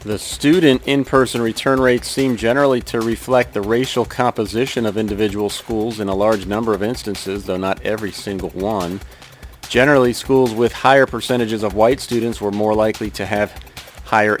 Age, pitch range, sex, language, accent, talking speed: 40-59, 105-125 Hz, male, English, American, 165 wpm